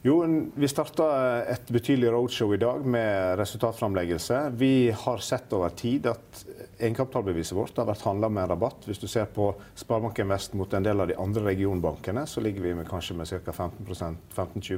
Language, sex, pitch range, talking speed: English, male, 95-120 Hz, 180 wpm